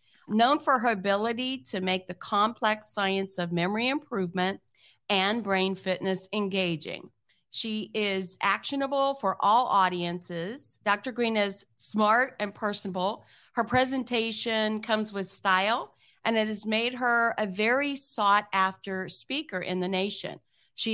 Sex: female